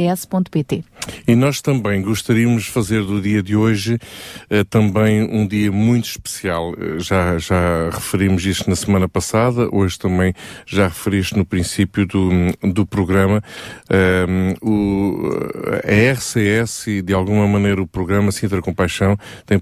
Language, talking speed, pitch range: Portuguese, 145 wpm, 95-110 Hz